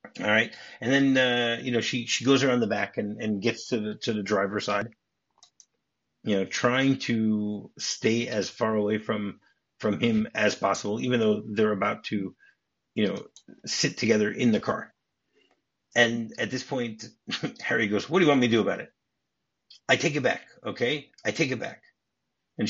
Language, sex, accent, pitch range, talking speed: English, male, American, 110-135 Hz, 190 wpm